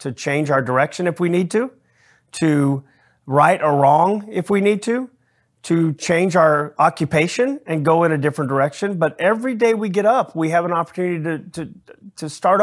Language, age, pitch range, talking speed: English, 40-59, 140-180 Hz, 190 wpm